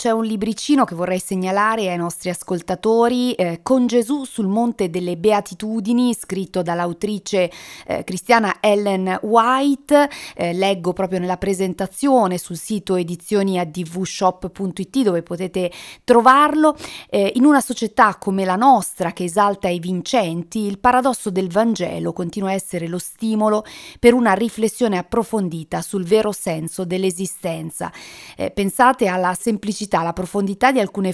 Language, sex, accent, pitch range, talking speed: Italian, female, native, 180-225 Hz, 130 wpm